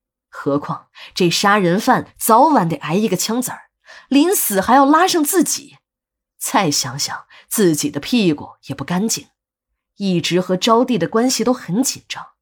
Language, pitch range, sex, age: Chinese, 155-235 Hz, female, 20-39